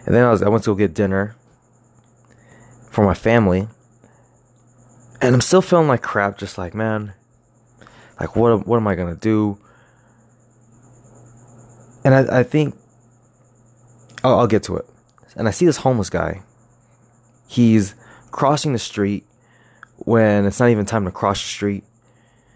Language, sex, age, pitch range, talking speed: English, male, 20-39, 100-120 Hz, 150 wpm